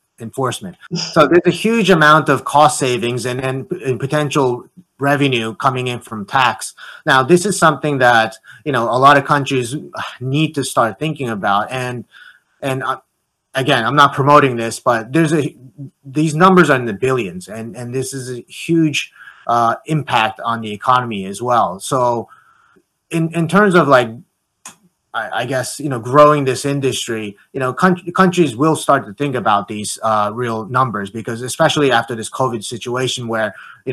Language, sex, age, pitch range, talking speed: English, male, 30-49, 115-145 Hz, 170 wpm